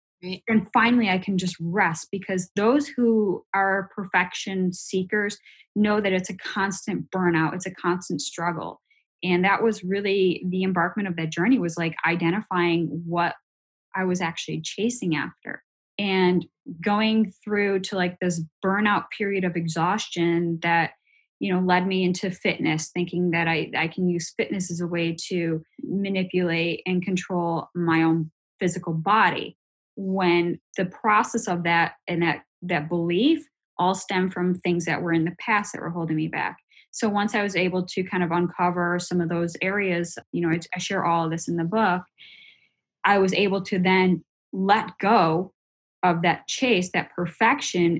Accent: American